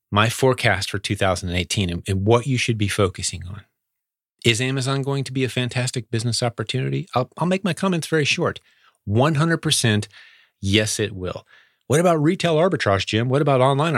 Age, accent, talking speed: 30-49, American, 170 wpm